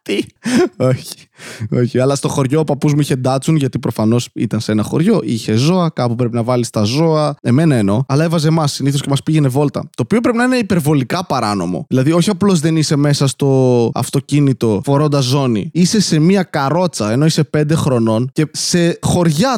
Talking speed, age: 185 wpm, 20-39